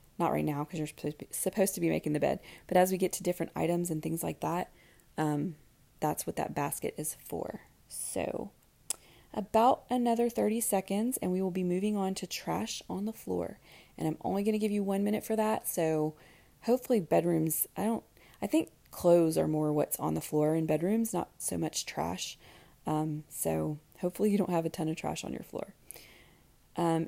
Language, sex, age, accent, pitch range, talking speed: English, female, 20-39, American, 160-215 Hz, 200 wpm